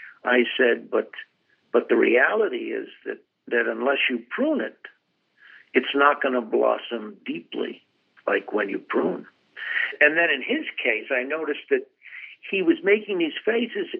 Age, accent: 60-79, American